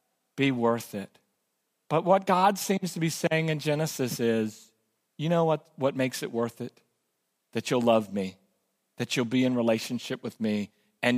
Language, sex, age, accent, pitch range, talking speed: English, male, 40-59, American, 120-185 Hz, 175 wpm